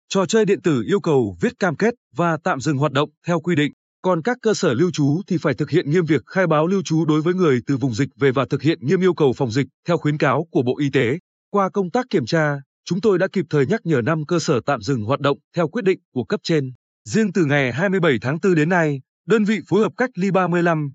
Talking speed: 270 wpm